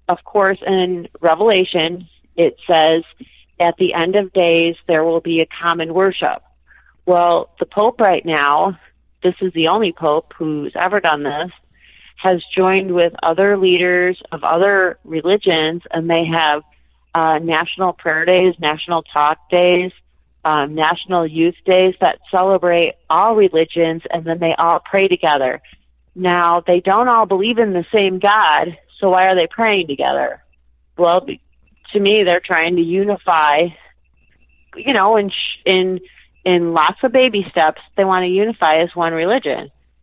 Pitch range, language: 165-195 Hz, English